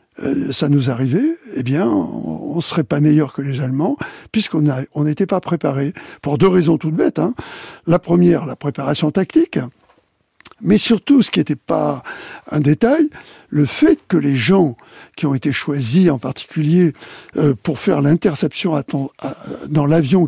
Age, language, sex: 60-79, French, male